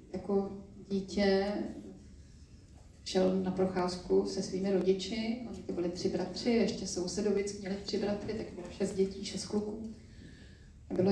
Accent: native